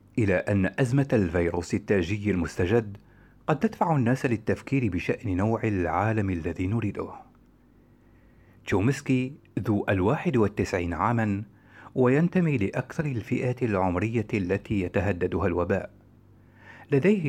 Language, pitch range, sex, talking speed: Arabic, 95-120 Hz, male, 95 wpm